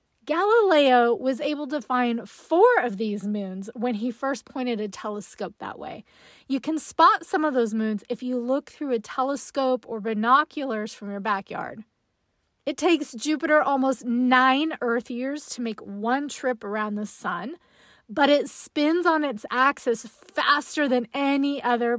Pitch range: 235-315 Hz